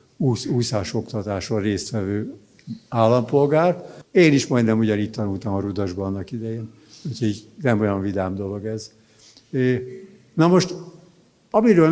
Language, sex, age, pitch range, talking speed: Hungarian, male, 60-79, 110-155 Hz, 105 wpm